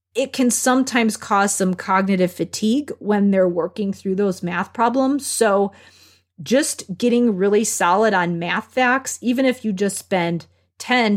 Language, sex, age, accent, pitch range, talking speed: English, female, 30-49, American, 185-235 Hz, 150 wpm